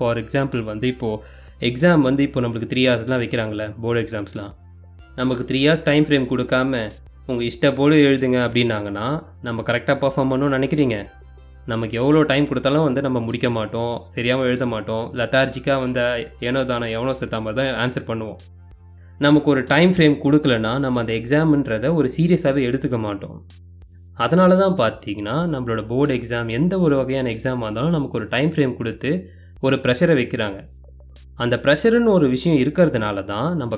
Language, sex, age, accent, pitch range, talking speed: Tamil, male, 20-39, native, 110-145 Hz, 155 wpm